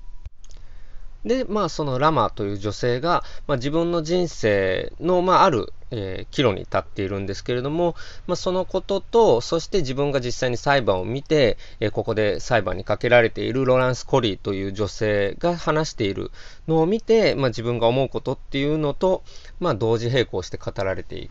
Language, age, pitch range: Japanese, 20-39, 105-175 Hz